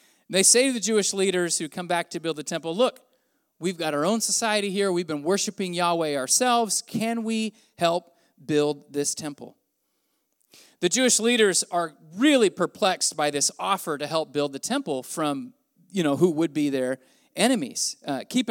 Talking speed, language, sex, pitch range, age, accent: 180 wpm, English, male, 165-225 Hz, 40-59, American